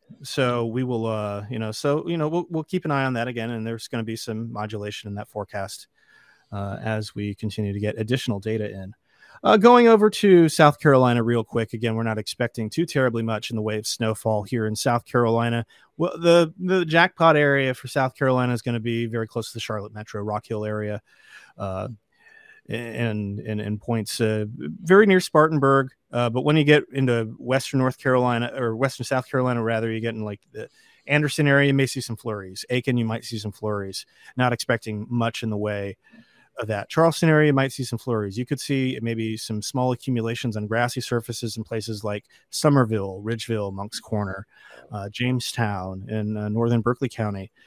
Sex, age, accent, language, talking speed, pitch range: male, 30-49, American, English, 200 wpm, 110-135 Hz